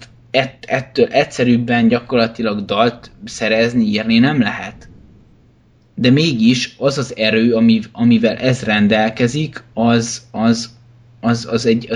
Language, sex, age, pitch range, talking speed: Hungarian, male, 20-39, 115-140 Hz, 90 wpm